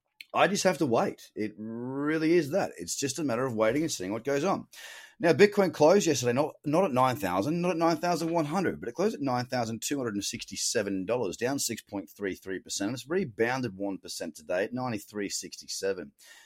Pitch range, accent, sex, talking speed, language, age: 110-145 Hz, Australian, male, 220 wpm, English, 30-49